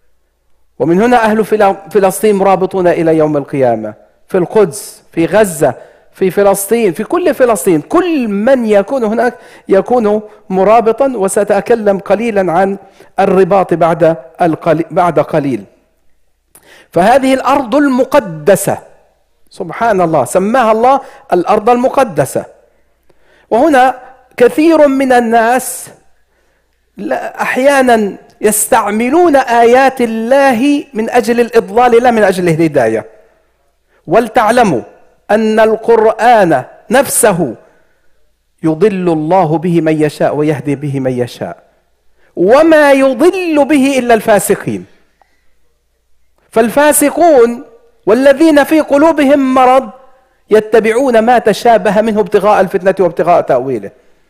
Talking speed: 95 wpm